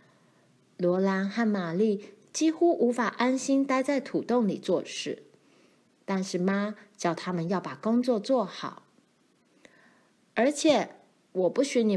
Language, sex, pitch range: Chinese, female, 175-245 Hz